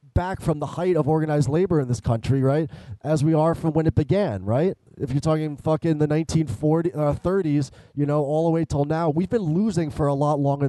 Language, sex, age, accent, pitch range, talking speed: English, male, 20-39, American, 130-160 Hz, 225 wpm